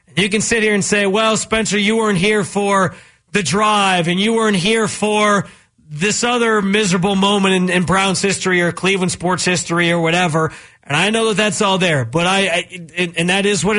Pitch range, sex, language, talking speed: 170-215 Hz, male, English, 205 wpm